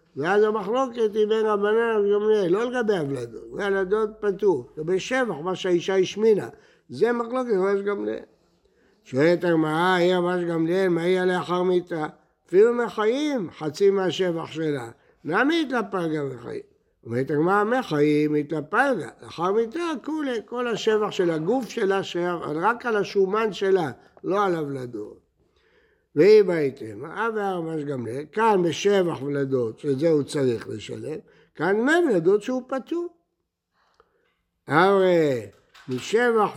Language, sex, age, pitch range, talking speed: Hebrew, male, 60-79, 155-220 Hz, 125 wpm